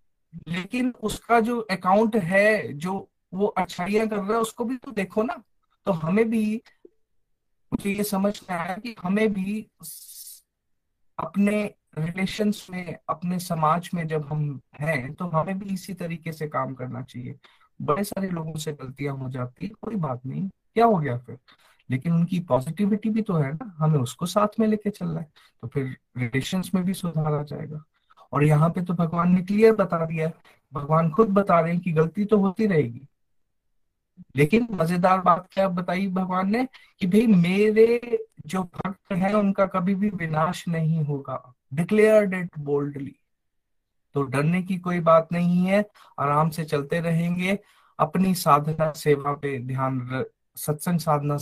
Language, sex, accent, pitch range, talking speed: Hindi, male, native, 150-200 Hz, 160 wpm